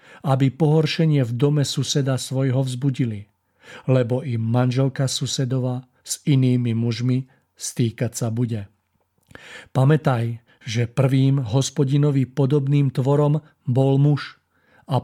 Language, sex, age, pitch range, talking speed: Czech, male, 50-69, 120-135 Hz, 105 wpm